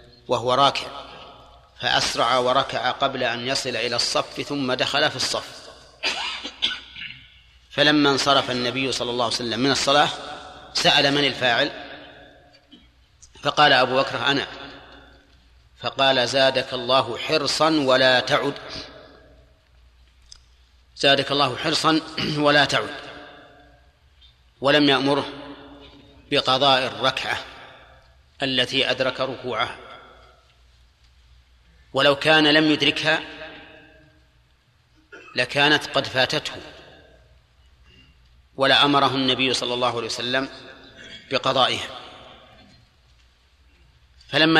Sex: male